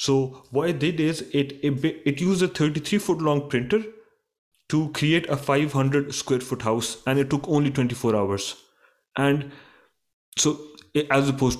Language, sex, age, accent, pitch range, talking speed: English, male, 30-49, Indian, 125-155 Hz, 165 wpm